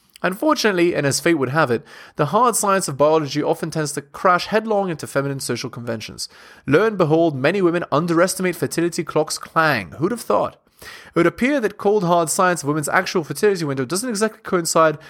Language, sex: English, male